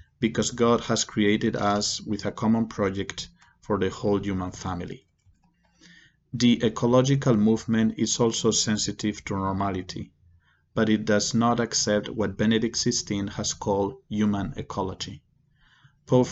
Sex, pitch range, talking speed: male, 100-120 Hz, 130 wpm